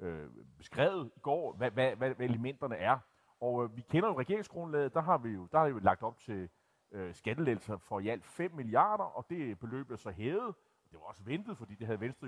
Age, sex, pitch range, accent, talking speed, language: 30-49, male, 120-180 Hz, native, 230 wpm, Danish